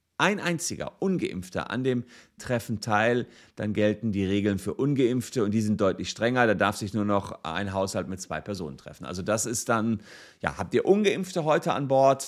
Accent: German